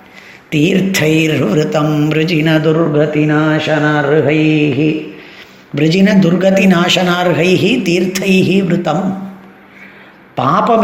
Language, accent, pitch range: Tamil, native, 160-190 Hz